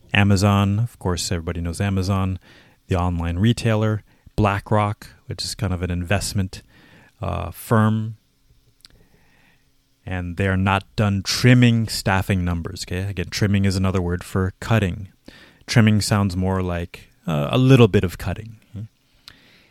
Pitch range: 95-115 Hz